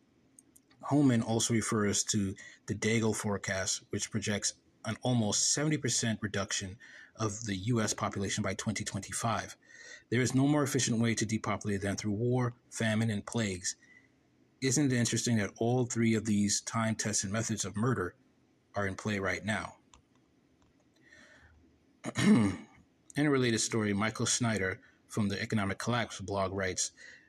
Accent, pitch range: American, 100-120 Hz